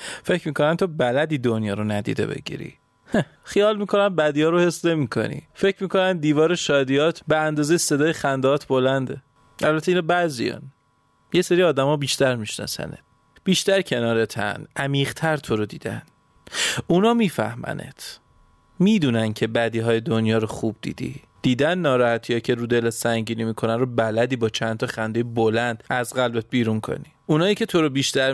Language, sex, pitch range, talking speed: Persian, male, 115-150 Hz, 150 wpm